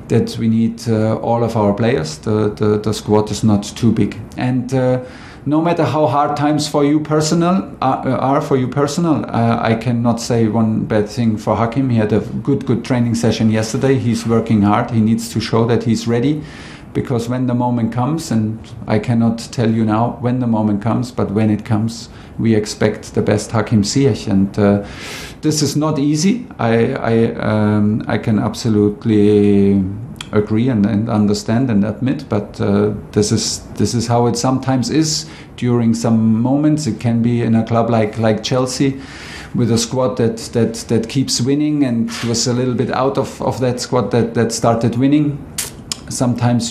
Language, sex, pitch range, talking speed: English, male, 110-130 Hz, 190 wpm